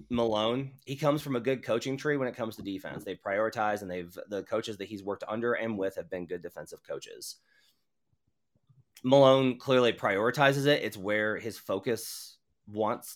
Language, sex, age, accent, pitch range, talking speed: English, male, 30-49, American, 95-120 Hz, 180 wpm